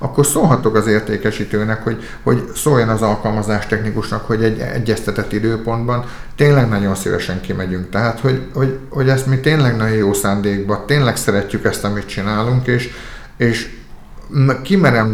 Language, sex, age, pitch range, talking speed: Hungarian, male, 50-69, 105-130 Hz, 145 wpm